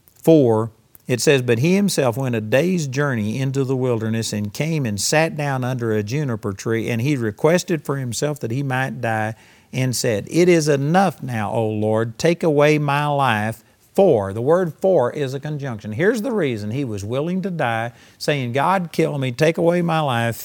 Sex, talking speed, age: male, 195 wpm, 50-69